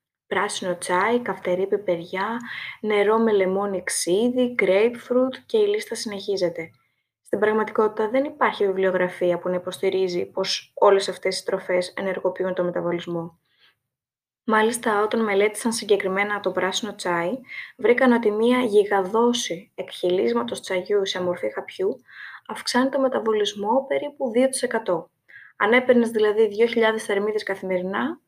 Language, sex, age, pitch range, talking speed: Greek, female, 20-39, 185-240 Hz, 120 wpm